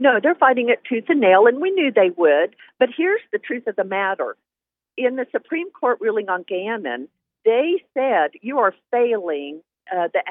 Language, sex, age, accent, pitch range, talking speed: English, female, 50-69, American, 200-270 Hz, 190 wpm